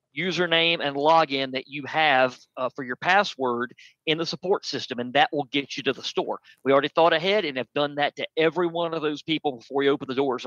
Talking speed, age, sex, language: 235 wpm, 40-59, male, English